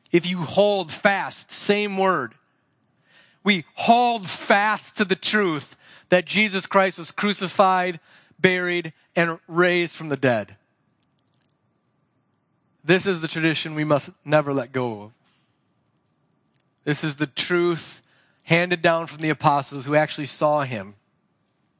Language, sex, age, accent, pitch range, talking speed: English, male, 40-59, American, 150-185 Hz, 125 wpm